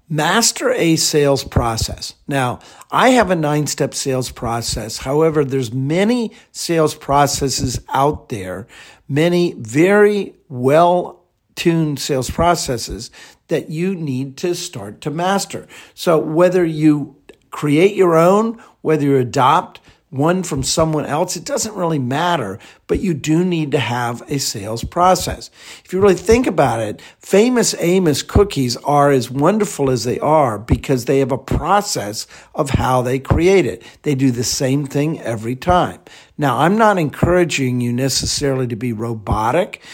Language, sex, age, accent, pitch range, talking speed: English, male, 50-69, American, 130-170 Hz, 145 wpm